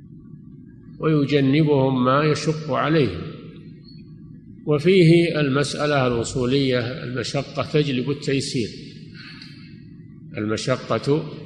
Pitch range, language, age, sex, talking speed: 125-155 Hz, Arabic, 50-69, male, 60 wpm